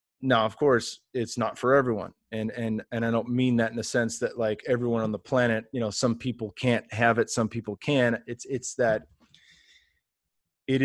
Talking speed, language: 205 wpm, English